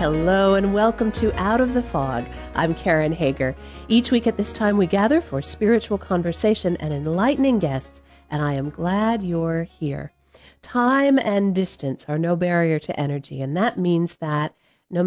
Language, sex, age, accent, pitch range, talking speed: English, female, 40-59, American, 160-220 Hz, 170 wpm